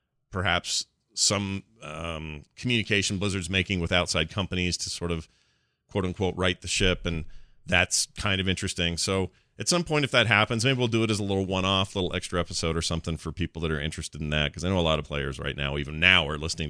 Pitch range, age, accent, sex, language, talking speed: 90-130 Hz, 40-59, American, male, English, 225 wpm